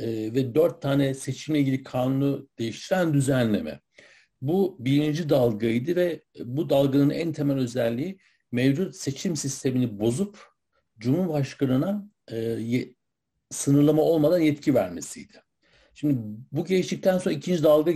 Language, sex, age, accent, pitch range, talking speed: Turkish, male, 60-79, native, 120-150 Hz, 110 wpm